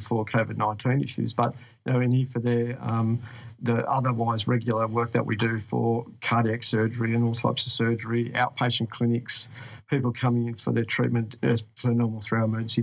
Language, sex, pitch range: English, male, 115-125 Hz